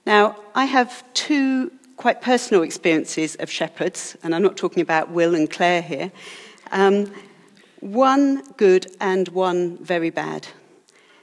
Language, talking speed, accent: English, 135 wpm, British